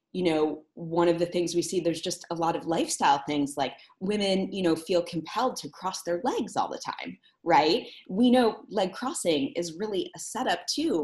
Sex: female